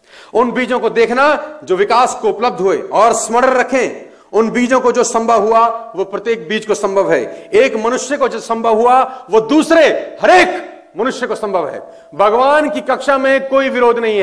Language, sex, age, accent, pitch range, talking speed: Hindi, male, 40-59, native, 185-245 Hz, 190 wpm